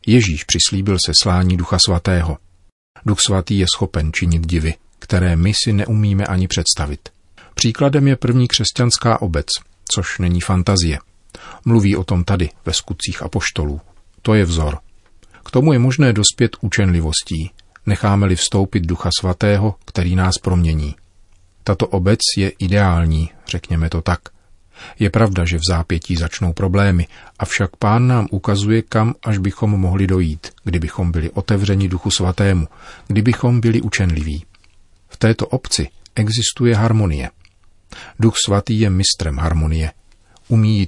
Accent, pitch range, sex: native, 85-105 Hz, male